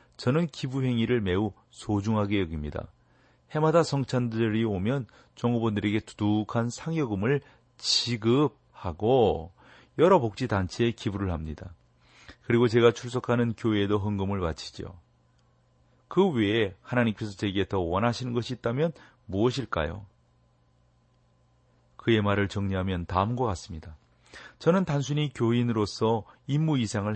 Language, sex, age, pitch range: Korean, male, 40-59, 95-125 Hz